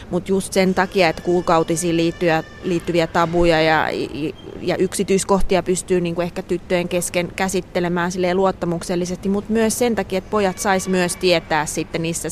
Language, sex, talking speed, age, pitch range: Finnish, female, 135 wpm, 30-49, 160-180 Hz